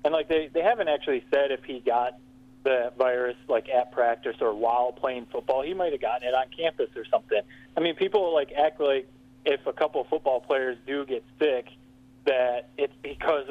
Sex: male